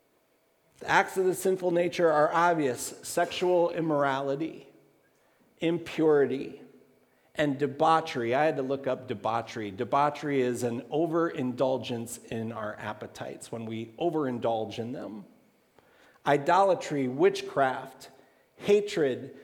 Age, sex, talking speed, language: 50-69, male, 105 wpm, English